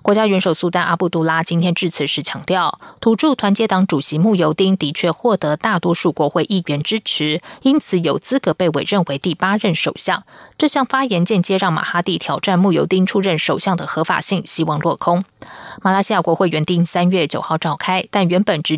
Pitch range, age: 165-215 Hz, 20-39